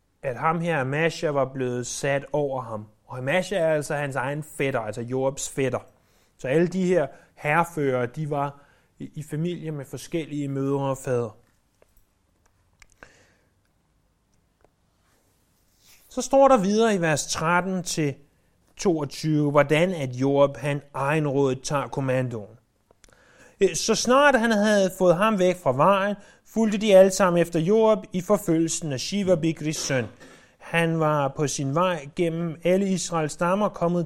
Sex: male